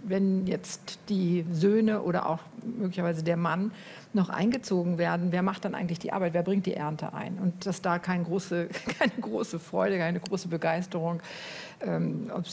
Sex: female